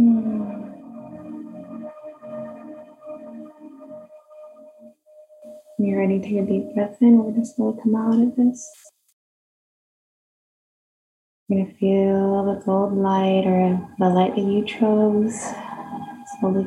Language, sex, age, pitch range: English, female, 20-39, 200-260 Hz